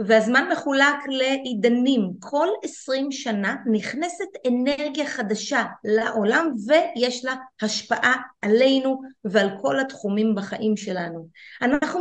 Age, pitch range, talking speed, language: 30-49, 220-270 Hz, 100 wpm, Hebrew